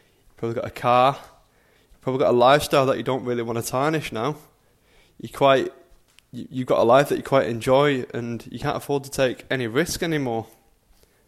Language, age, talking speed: English, 20-39, 185 wpm